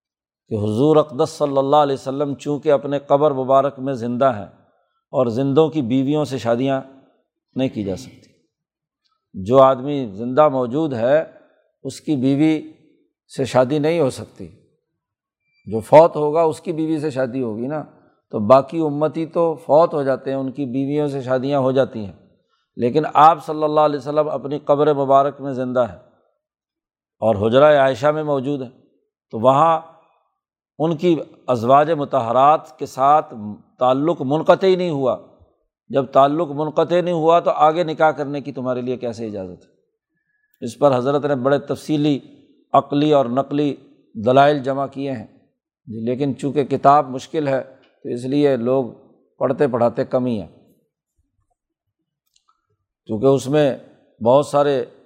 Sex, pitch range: male, 130-155 Hz